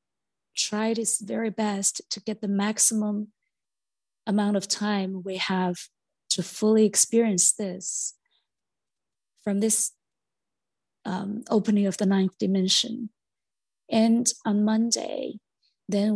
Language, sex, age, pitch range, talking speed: English, female, 30-49, 190-220 Hz, 110 wpm